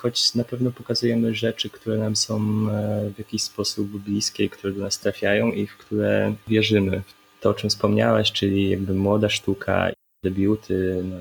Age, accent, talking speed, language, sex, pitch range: 20-39, native, 165 wpm, Polish, male, 95-105 Hz